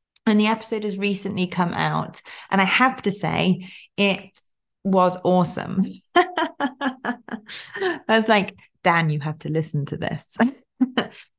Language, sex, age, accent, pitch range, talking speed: English, female, 30-49, British, 160-195 Hz, 130 wpm